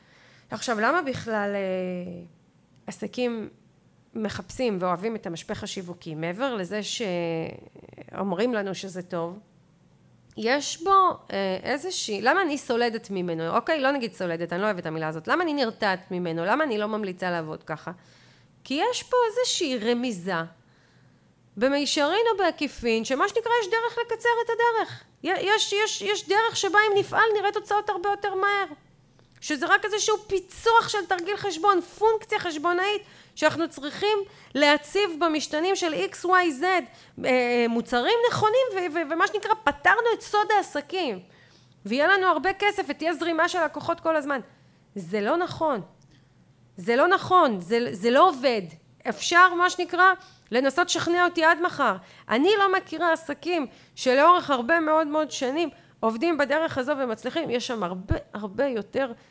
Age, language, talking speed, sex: 30-49, Hebrew, 140 wpm, female